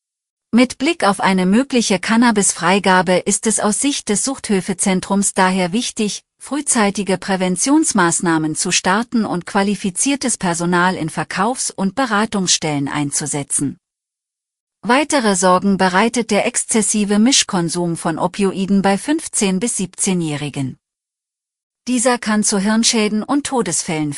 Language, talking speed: German, 110 wpm